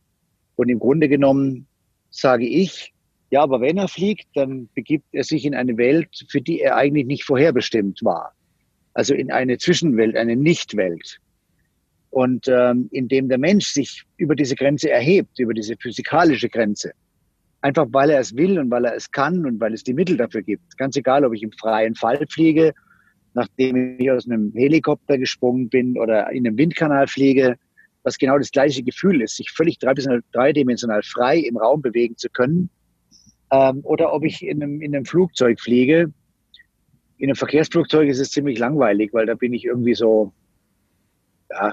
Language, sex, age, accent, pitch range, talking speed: German, male, 50-69, German, 120-155 Hz, 175 wpm